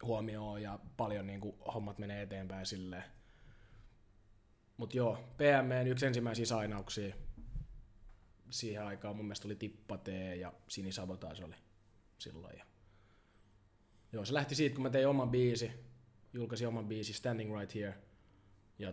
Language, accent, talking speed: Finnish, native, 135 wpm